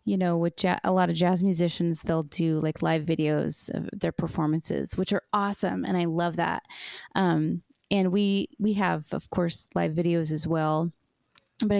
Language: English